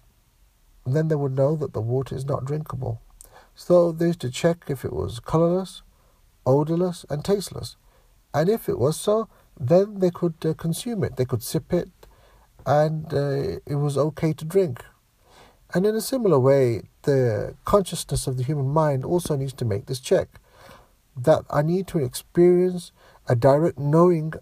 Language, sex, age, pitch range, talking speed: English, male, 60-79, 120-160 Hz, 170 wpm